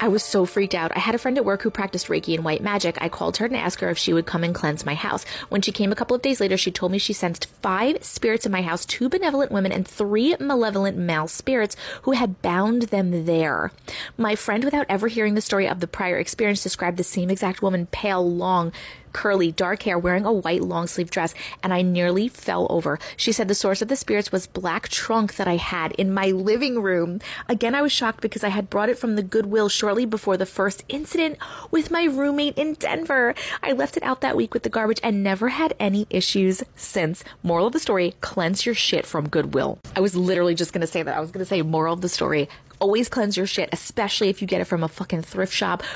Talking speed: 245 wpm